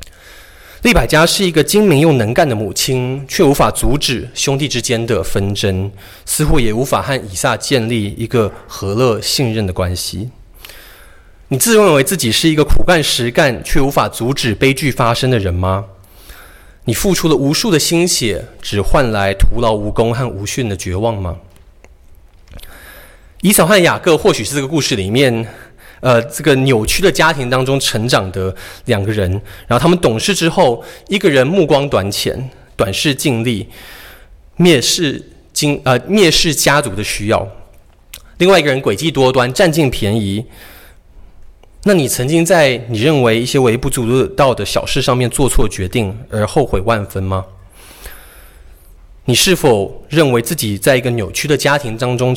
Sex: male